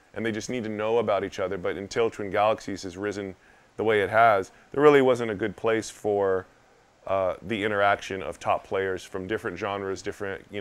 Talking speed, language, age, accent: 210 wpm, English, 20-39, American